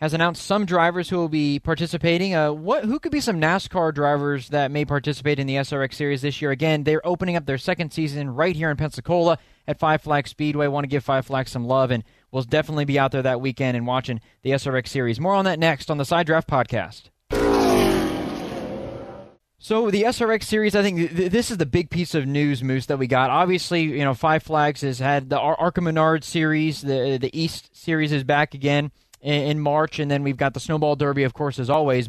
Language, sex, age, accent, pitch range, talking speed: English, male, 20-39, American, 135-160 Hz, 225 wpm